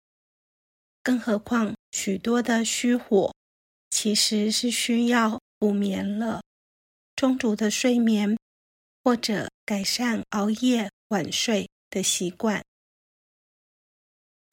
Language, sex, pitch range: Chinese, female, 205-240 Hz